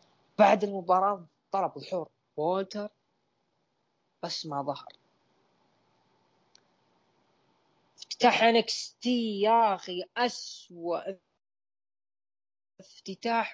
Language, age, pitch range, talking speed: Arabic, 20-39, 160-215 Hz, 65 wpm